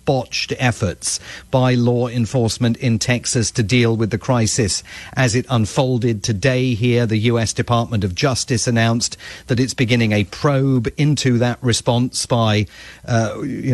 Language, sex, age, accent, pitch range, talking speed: English, male, 40-59, British, 110-130 Hz, 150 wpm